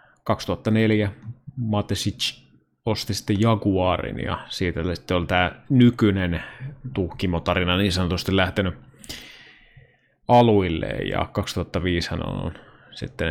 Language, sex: Finnish, male